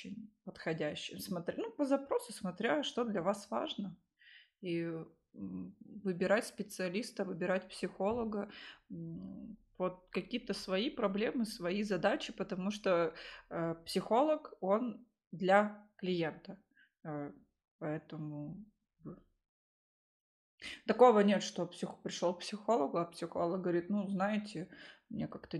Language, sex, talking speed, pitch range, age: Russian, female, 100 wpm, 175-220 Hz, 20-39